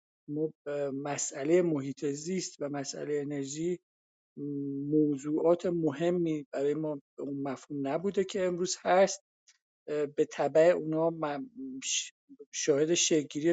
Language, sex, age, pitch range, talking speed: Persian, male, 50-69, 150-180 Hz, 100 wpm